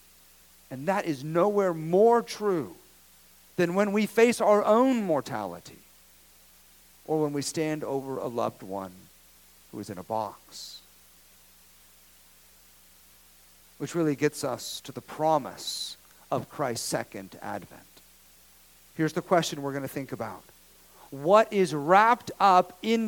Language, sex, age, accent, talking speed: English, male, 50-69, American, 130 wpm